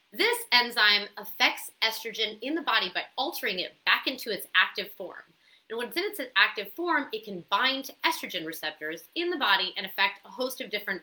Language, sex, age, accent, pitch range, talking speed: English, female, 30-49, American, 190-270 Hz, 200 wpm